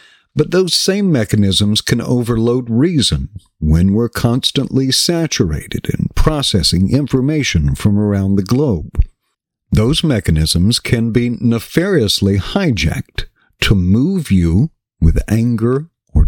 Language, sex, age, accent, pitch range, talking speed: English, male, 60-79, American, 100-135 Hz, 110 wpm